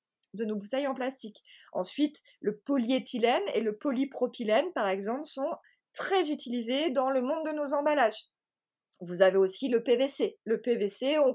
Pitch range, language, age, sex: 215-295 Hz, French, 30-49, female